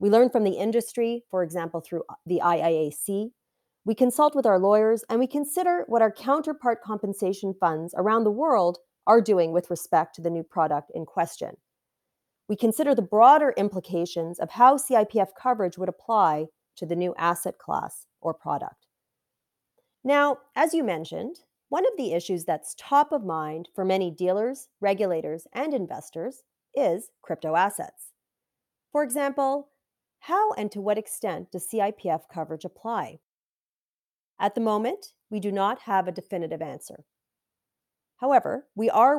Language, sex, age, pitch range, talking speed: English, female, 30-49, 175-255 Hz, 150 wpm